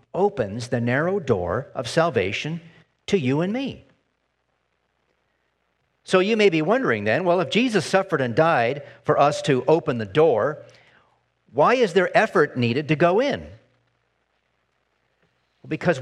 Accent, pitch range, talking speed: American, 125-170 Hz, 140 wpm